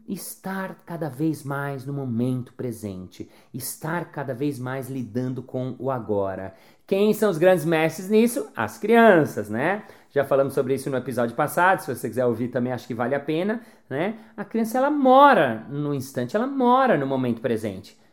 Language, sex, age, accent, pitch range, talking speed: Portuguese, male, 40-59, Brazilian, 140-225 Hz, 175 wpm